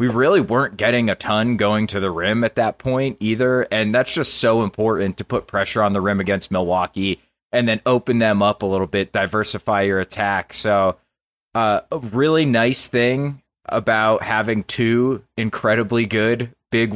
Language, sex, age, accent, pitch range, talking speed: English, male, 30-49, American, 100-130 Hz, 175 wpm